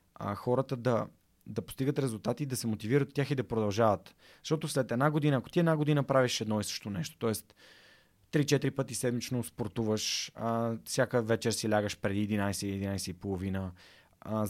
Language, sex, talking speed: Bulgarian, male, 155 wpm